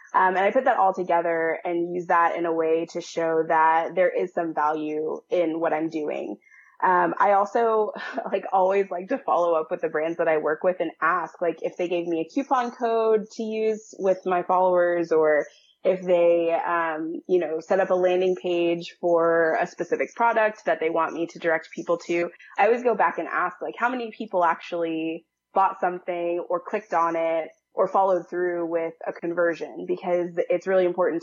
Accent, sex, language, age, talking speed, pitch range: American, female, English, 20-39, 200 wpm, 160-180 Hz